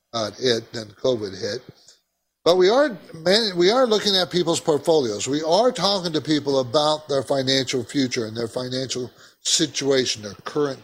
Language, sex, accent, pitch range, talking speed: English, male, American, 125-180 Hz, 165 wpm